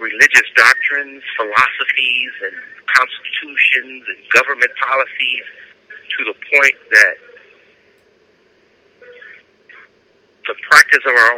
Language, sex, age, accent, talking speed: English, male, 50-69, American, 85 wpm